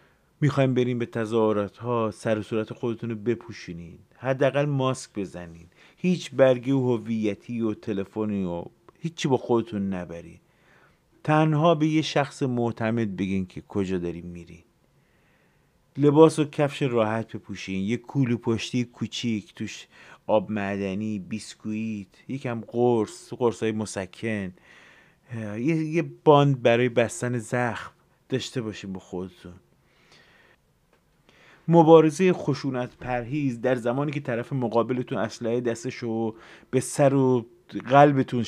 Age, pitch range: 30-49, 110-150 Hz